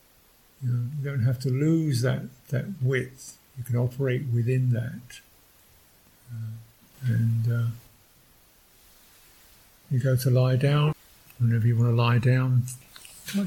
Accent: British